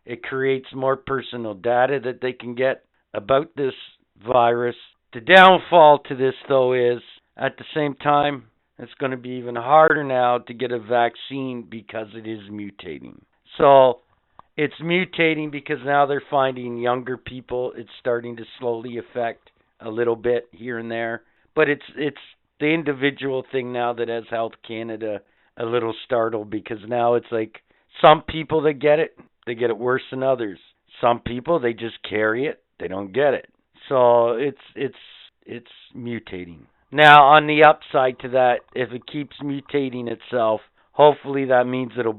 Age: 50-69